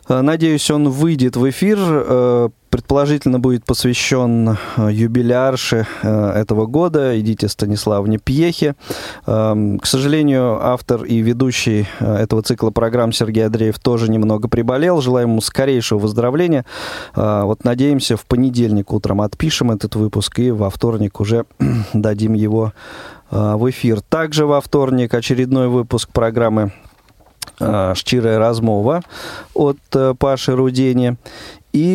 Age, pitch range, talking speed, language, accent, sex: 20-39, 110-130 Hz, 110 wpm, Russian, native, male